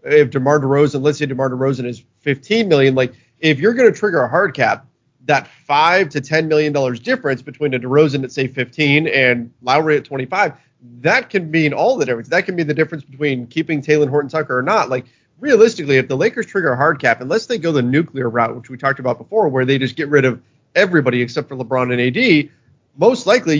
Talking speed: 220 wpm